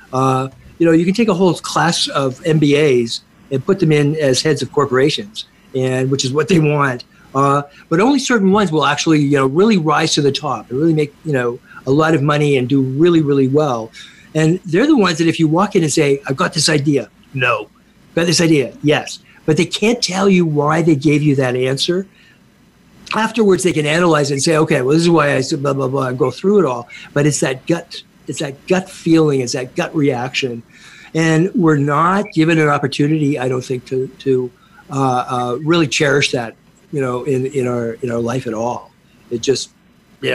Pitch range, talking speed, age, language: 135-170 Hz, 220 wpm, 50-69, English